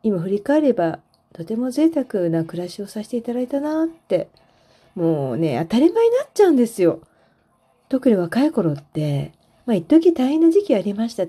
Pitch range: 170-260 Hz